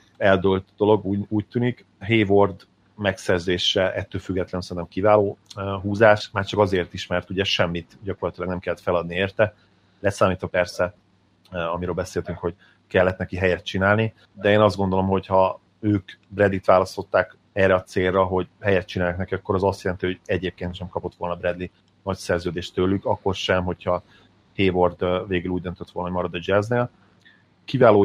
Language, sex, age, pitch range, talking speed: Hungarian, male, 30-49, 90-100 Hz, 160 wpm